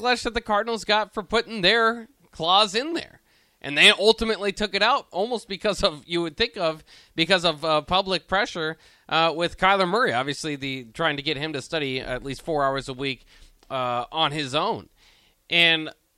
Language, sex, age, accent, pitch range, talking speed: English, male, 20-39, American, 130-185 Hz, 190 wpm